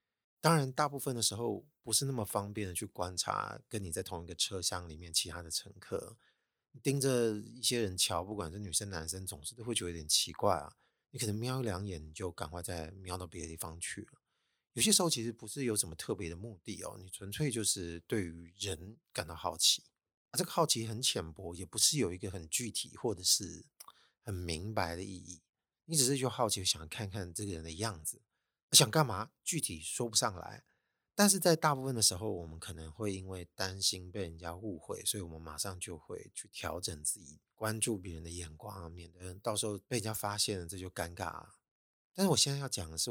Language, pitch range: Chinese, 90-120 Hz